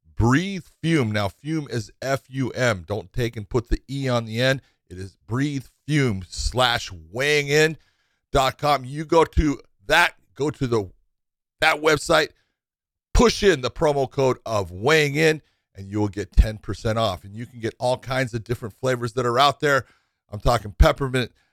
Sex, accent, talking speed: male, American, 175 wpm